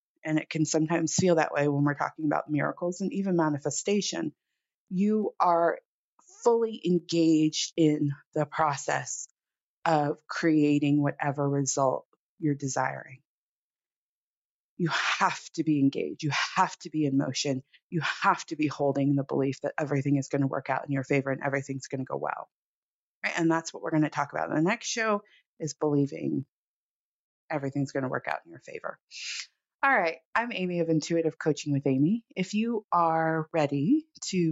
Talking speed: 170 wpm